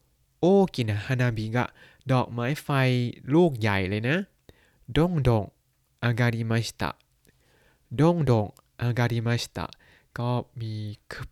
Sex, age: male, 20-39